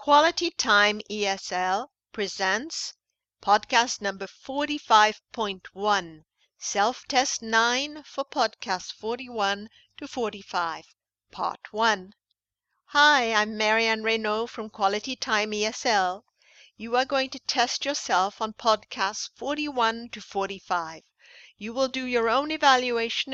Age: 50-69